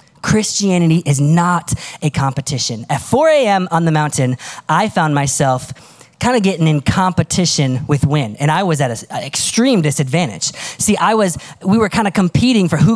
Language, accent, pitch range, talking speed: English, American, 135-175 Hz, 175 wpm